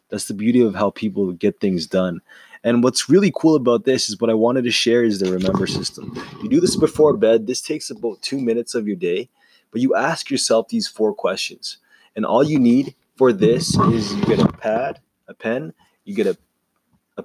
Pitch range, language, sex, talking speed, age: 110-155 Hz, English, male, 215 wpm, 20-39